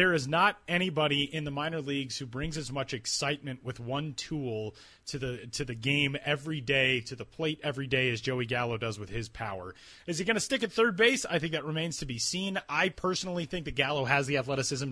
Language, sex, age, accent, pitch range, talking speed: English, male, 30-49, American, 130-170 Hz, 235 wpm